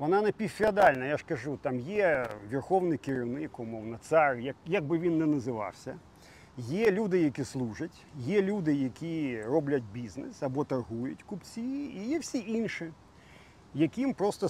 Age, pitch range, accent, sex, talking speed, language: 40-59, 135-200 Hz, native, male, 145 wpm, Ukrainian